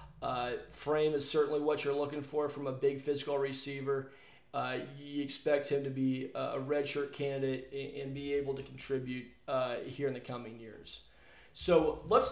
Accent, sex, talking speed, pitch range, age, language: American, male, 170 wpm, 135-150 Hz, 30-49, English